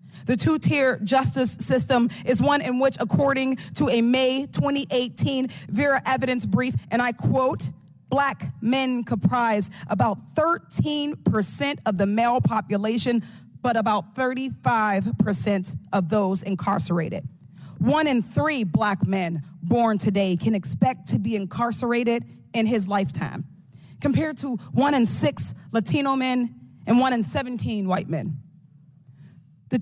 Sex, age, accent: female, 40-59, American